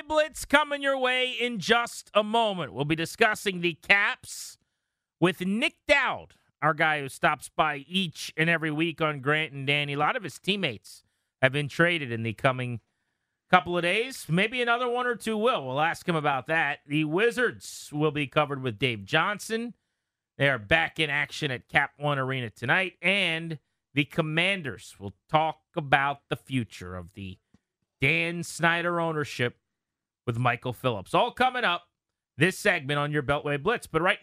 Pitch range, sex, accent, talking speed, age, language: 140-185 Hz, male, American, 175 wpm, 30-49, English